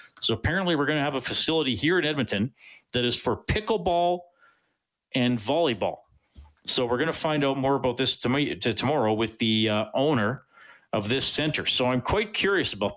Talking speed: 195 wpm